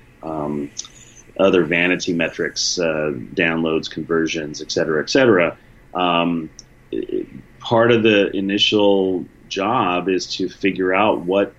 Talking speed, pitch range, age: 120 wpm, 80-105 Hz, 30-49